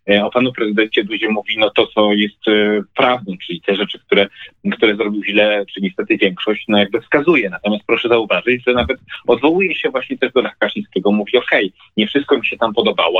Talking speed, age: 205 wpm, 30-49